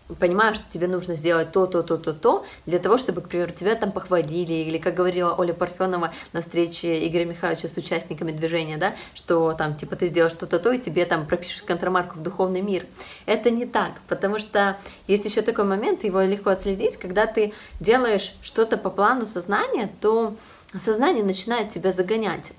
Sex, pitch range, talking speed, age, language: female, 175-205 Hz, 180 wpm, 20-39, Russian